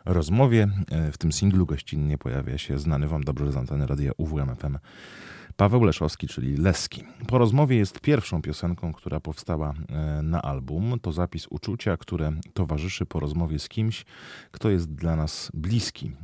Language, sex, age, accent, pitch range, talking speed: Polish, male, 30-49, native, 75-95 Hz, 150 wpm